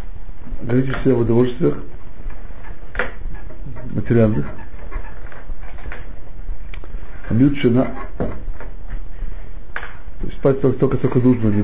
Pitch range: 85-120 Hz